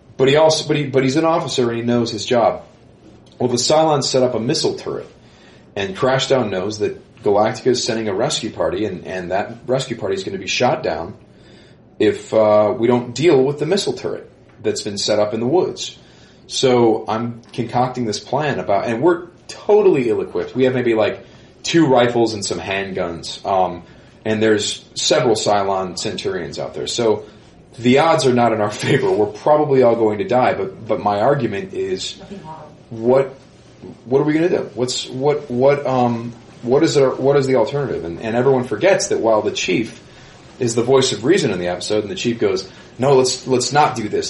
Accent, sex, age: American, male, 30-49